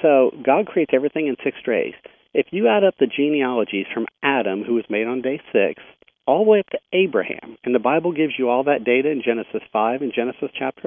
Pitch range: 115-155 Hz